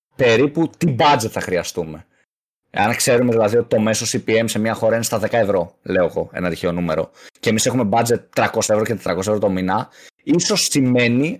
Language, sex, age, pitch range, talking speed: Greek, male, 20-39, 105-150 Hz, 195 wpm